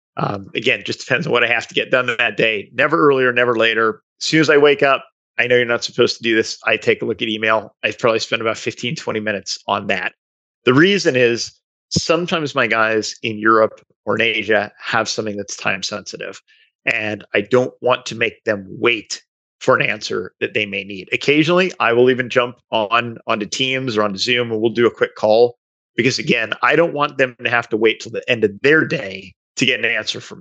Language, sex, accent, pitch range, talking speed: English, male, American, 110-130 Hz, 230 wpm